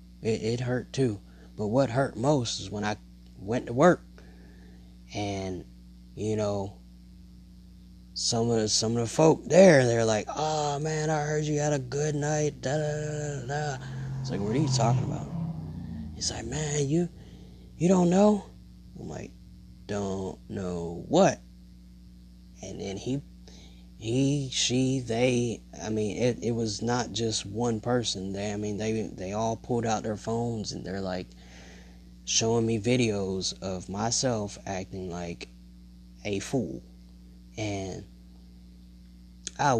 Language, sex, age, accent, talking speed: English, male, 20-39, American, 140 wpm